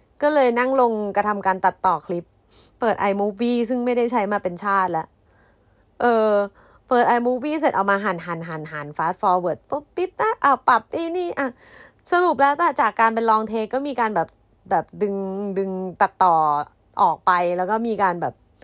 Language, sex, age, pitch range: Thai, female, 30-49, 195-265 Hz